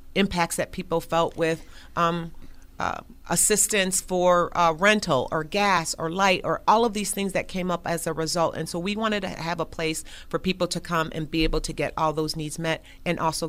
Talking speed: 220 wpm